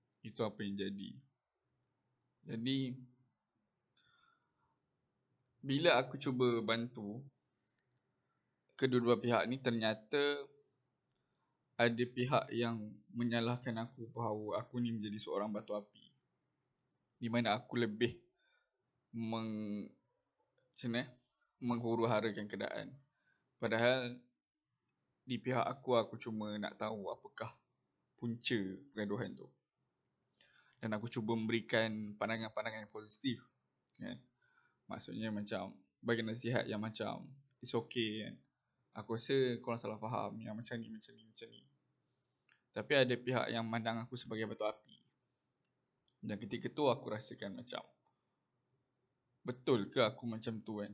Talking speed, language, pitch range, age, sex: 115 wpm, Malay, 110-130 Hz, 20-39, male